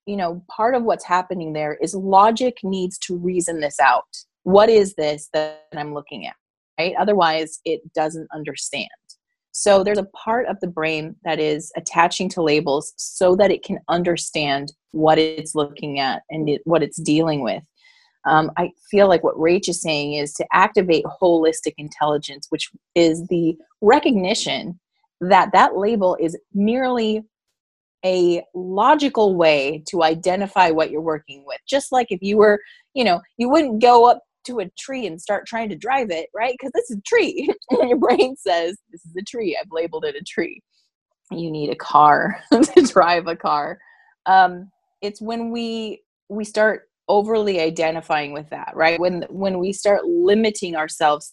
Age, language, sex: 30-49, English, female